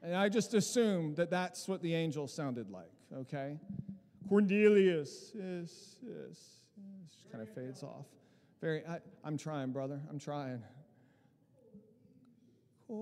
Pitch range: 200-265 Hz